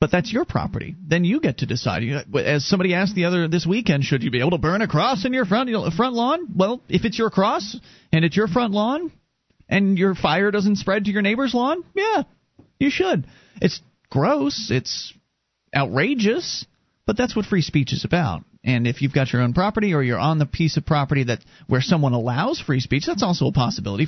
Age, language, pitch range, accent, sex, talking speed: 40-59, English, 135-210 Hz, American, male, 220 wpm